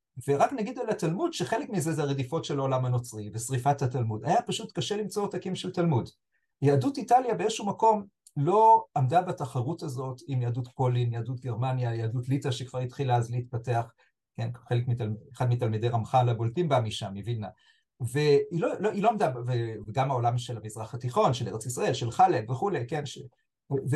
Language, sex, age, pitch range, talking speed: Hebrew, male, 40-59, 125-185 Hz, 170 wpm